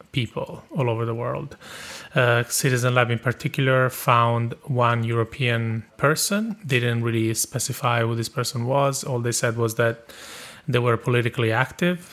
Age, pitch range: 30-49, 110-125 Hz